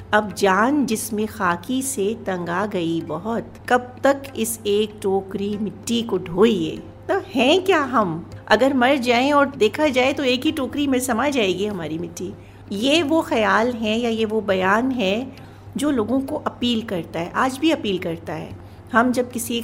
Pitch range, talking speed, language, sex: 190-240 Hz, 175 wpm, Hindi, female